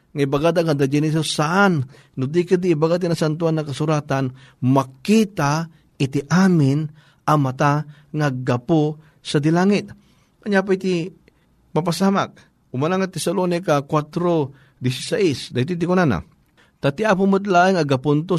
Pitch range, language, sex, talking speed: 145-180 Hz, Filipino, male, 125 wpm